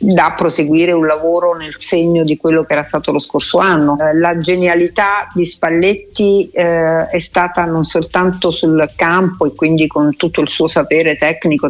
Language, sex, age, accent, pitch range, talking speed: Italian, female, 50-69, native, 160-185 Hz, 170 wpm